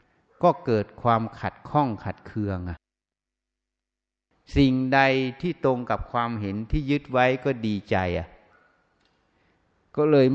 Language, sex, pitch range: Thai, male, 95-125 Hz